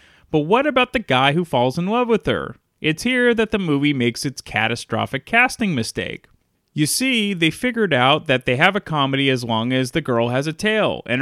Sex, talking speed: male, 215 wpm